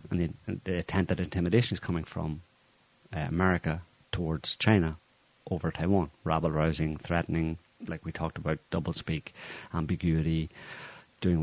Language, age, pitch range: English, 30-49, 85-105 Hz